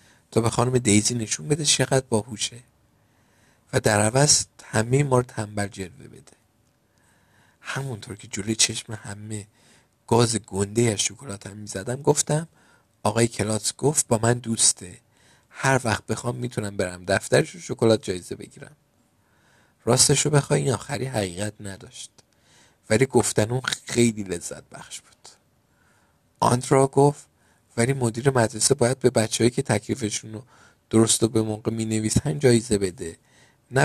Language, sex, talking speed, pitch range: Persian, male, 135 wpm, 105-130 Hz